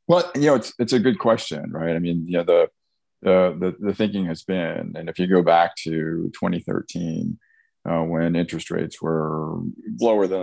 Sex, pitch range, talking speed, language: male, 75-90 Hz, 195 wpm, English